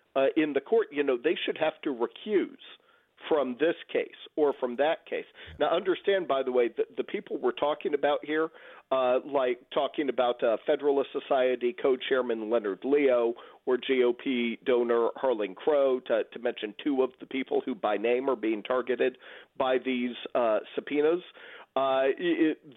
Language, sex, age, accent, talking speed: English, male, 50-69, American, 170 wpm